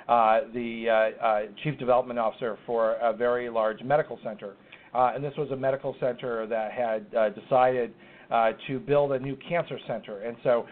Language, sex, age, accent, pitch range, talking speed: English, male, 40-59, American, 125-150 Hz, 185 wpm